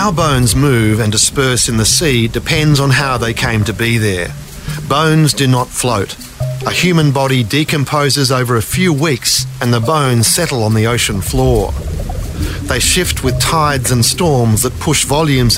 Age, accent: 50-69, Australian